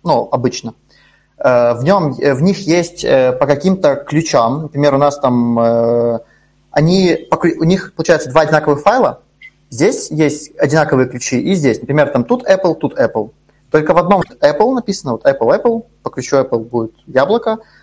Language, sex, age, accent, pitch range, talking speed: Russian, male, 20-39, native, 130-170 Hz, 155 wpm